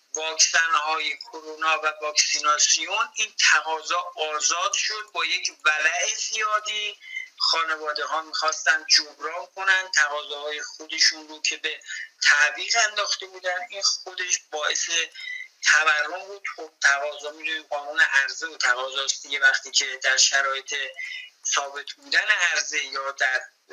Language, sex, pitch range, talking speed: Persian, male, 155-225 Hz, 120 wpm